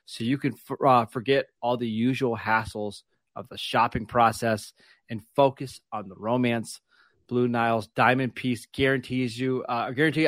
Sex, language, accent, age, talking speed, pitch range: male, English, American, 30-49, 150 wpm, 110-135 Hz